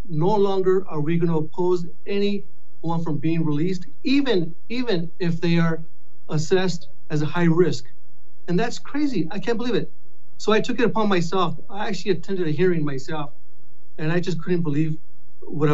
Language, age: English, 30-49